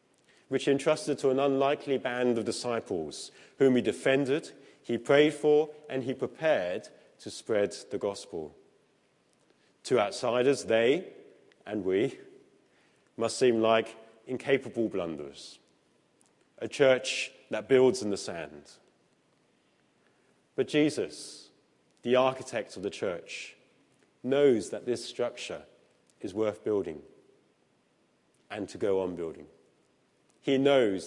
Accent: British